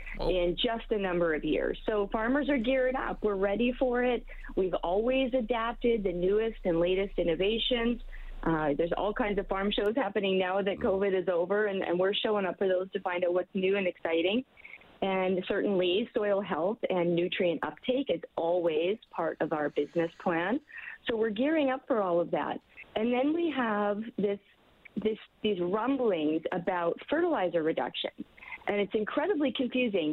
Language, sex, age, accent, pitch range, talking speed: English, female, 30-49, American, 185-245 Hz, 175 wpm